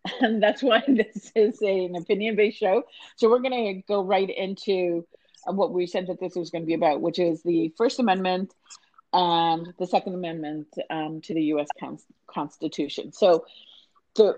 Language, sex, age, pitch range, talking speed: English, female, 40-59, 165-210 Hz, 185 wpm